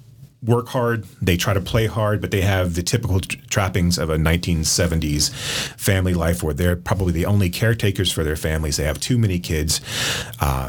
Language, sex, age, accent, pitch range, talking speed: English, male, 30-49, American, 85-115 Hz, 185 wpm